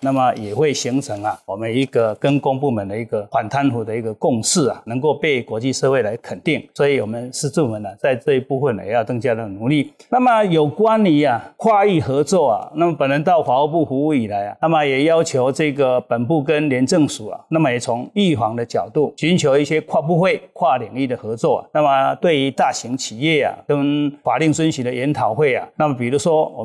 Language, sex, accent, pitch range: Chinese, male, native, 130-160 Hz